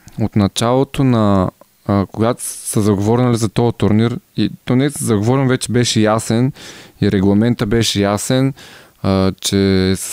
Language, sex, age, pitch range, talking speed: Bulgarian, male, 20-39, 105-125 Hz, 140 wpm